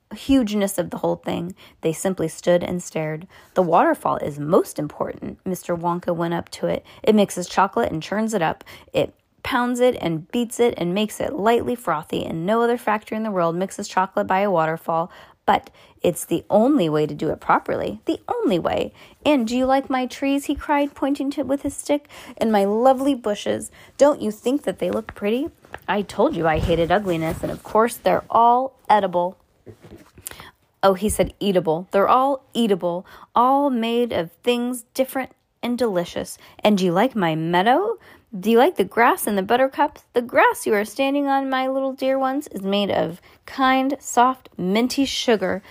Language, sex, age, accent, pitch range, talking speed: English, female, 20-39, American, 180-260 Hz, 190 wpm